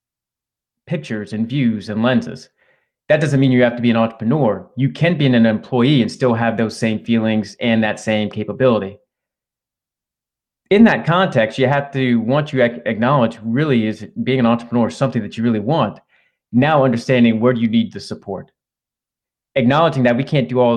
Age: 30-49